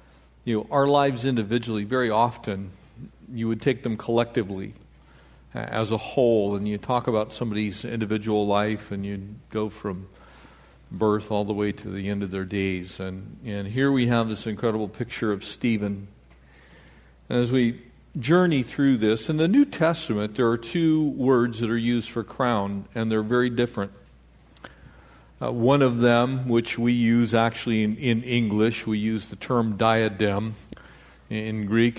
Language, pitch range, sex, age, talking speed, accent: English, 100-120 Hz, male, 50-69, 165 wpm, American